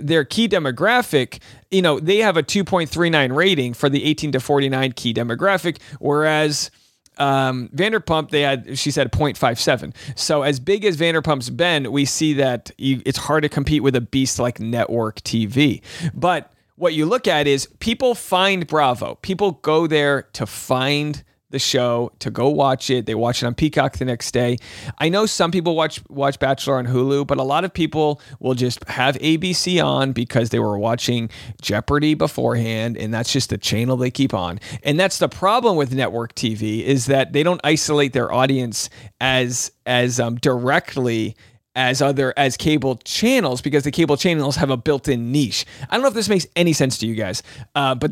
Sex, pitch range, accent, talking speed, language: male, 125-160 Hz, American, 185 wpm, English